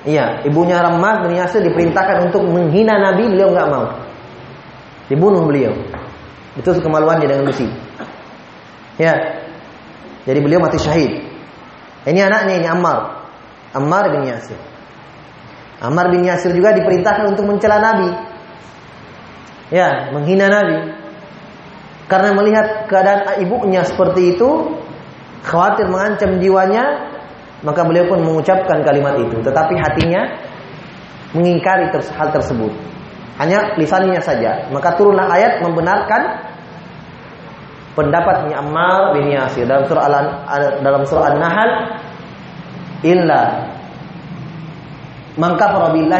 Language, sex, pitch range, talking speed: Indonesian, male, 150-195 Hz, 100 wpm